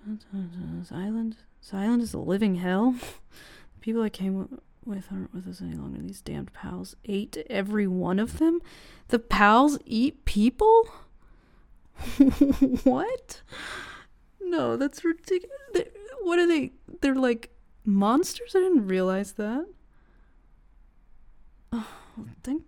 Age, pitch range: 30-49, 190-265 Hz